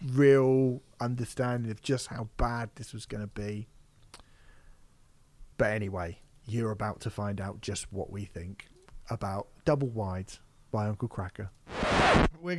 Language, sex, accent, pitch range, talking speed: English, male, British, 115-145 Hz, 140 wpm